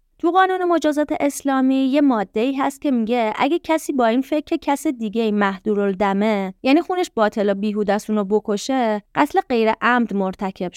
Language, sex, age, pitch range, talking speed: Persian, female, 20-39, 210-270 Hz, 155 wpm